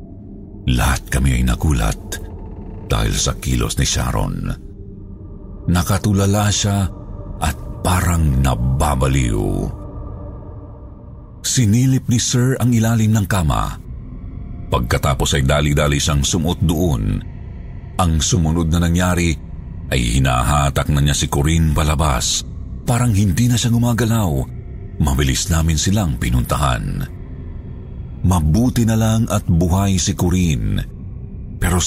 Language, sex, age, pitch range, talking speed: Filipino, male, 50-69, 75-105 Hz, 100 wpm